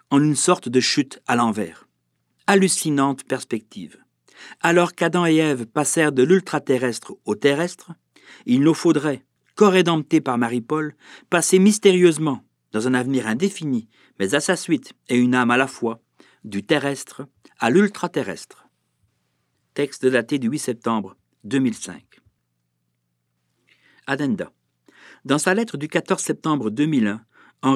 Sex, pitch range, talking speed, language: male, 115-165 Hz, 130 wpm, French